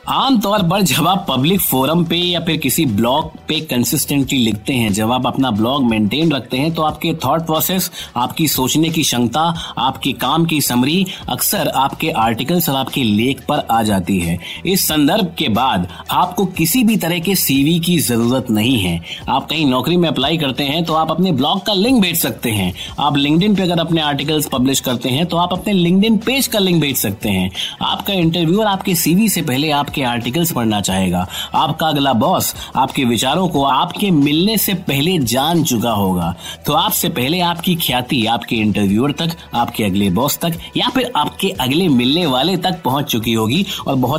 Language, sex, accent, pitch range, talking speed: Hindi, male, native, 115-170 Hz, 140 wpm